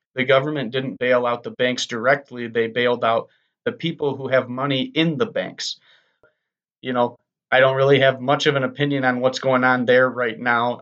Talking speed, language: 200 wpm, English